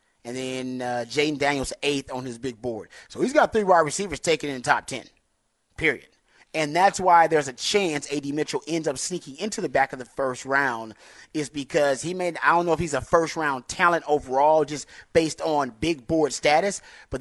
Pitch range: 130-160 Hz